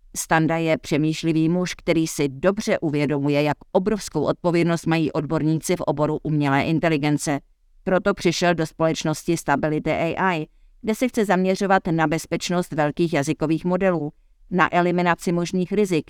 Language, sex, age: Czech, female, 50-69